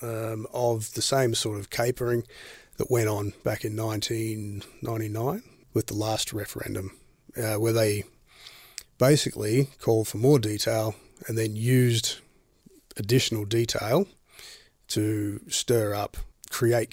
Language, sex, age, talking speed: English, male, 30-49, 120 wpm